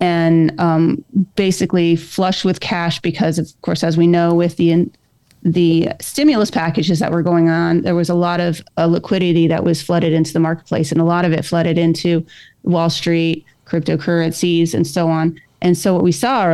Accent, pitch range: American, 165-180 Hz